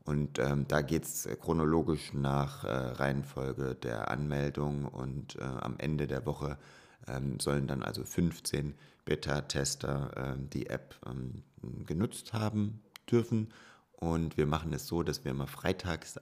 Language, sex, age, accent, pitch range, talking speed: German, male, 30-49, German, 70-85 Hz, 140 wpm